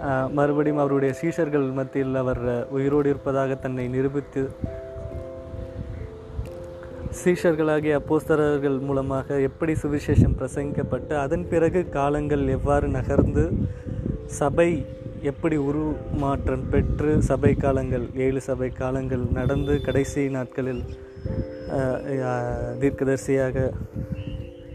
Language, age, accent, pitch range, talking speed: Tamil, 20-39, native, 130-155 Hz, 80 wpm